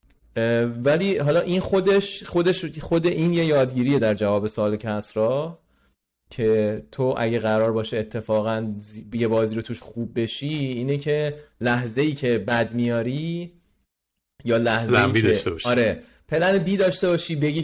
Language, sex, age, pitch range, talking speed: Persian, male, 30-49, 110-145 Hz, 145 wpm